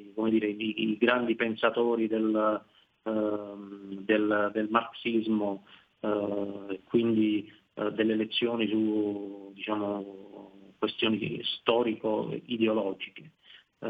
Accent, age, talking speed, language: native, 40-59, 90 wpm, Italian